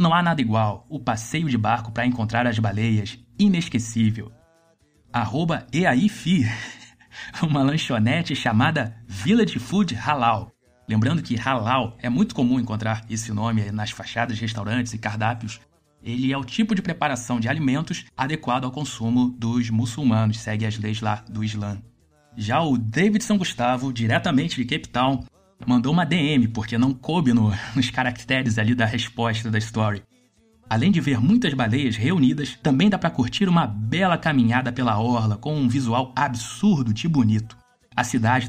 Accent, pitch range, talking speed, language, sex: Brazilian, 115-140 Hz, 160 wpm, Portuguese, male